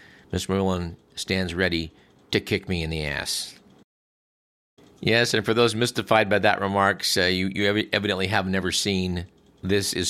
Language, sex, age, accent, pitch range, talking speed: English, male, 50-69, American, 90-110 Hz, 160 wpm